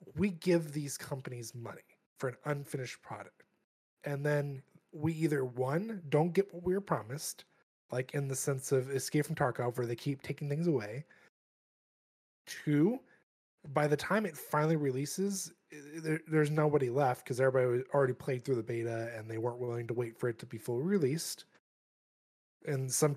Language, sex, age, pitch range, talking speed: English, male, 20-39, 130-175 Hz, 170 wpm